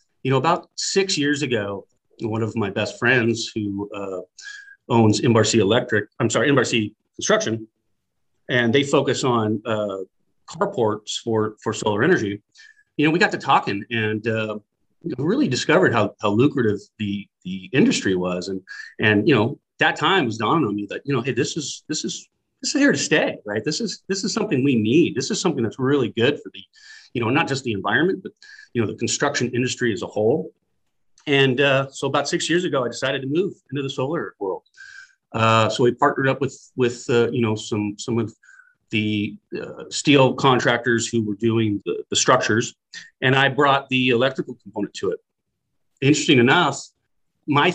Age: 40-59